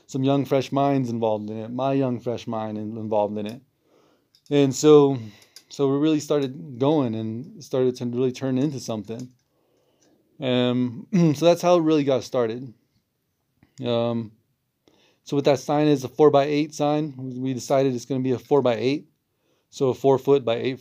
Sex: male